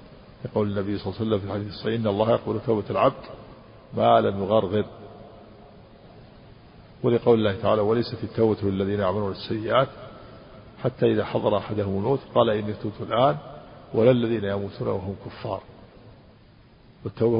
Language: Arabic